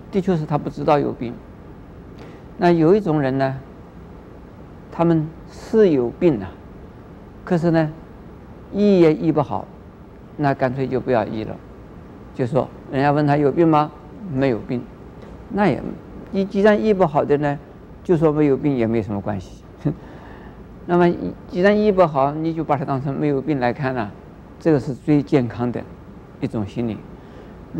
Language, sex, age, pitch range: Chinese, male, 50-69, 130-175 Hz